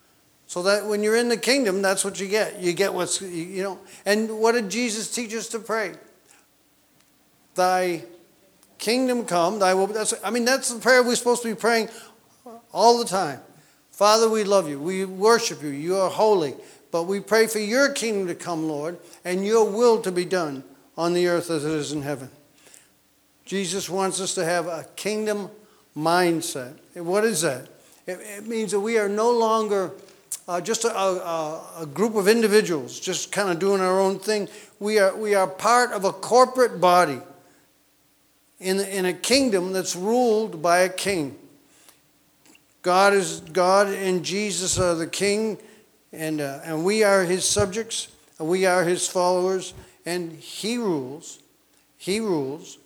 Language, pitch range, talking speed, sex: English, 175-215 Hz, 175 wpm, male